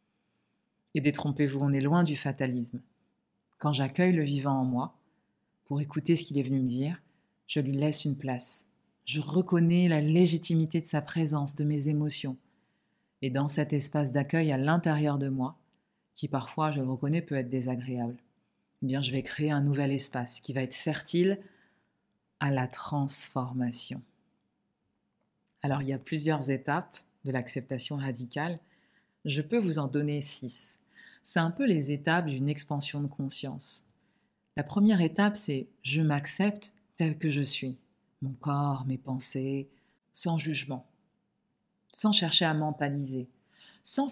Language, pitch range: French, 135-165 Hz